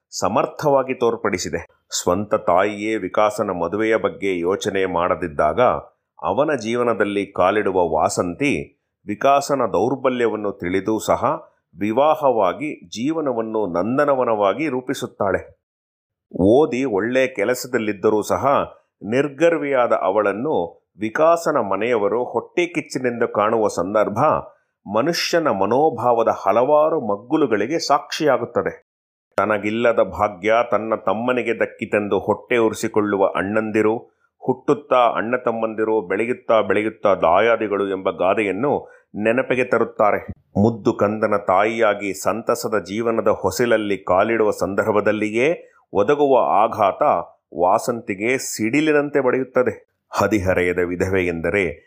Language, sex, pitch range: Kannada, male, 100-130 Hz